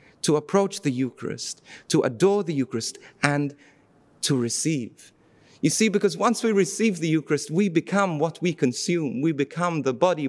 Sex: male